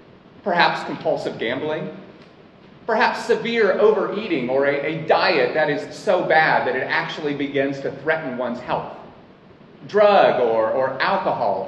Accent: American